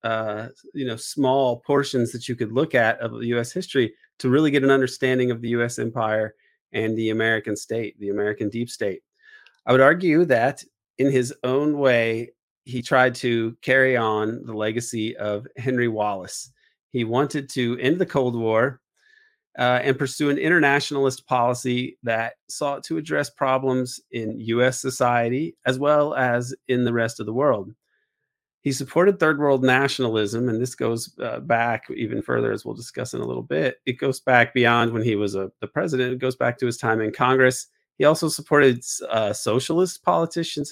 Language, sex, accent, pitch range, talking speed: English, male, American, 115-135 Hz, 175 wpm